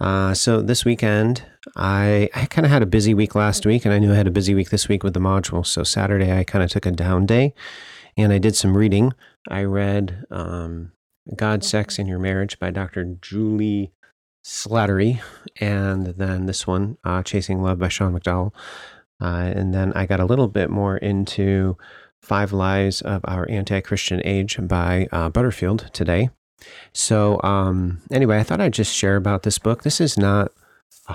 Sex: male